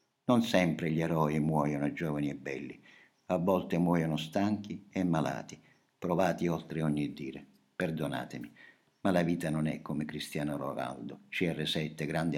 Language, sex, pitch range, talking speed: Italian, male, 75-90 Hz, 140 wpm